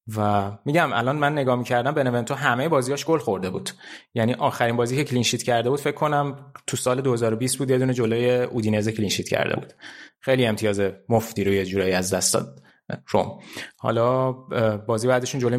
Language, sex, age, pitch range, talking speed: Persian, male, 20-39, 105-125 Hz, 175 wpm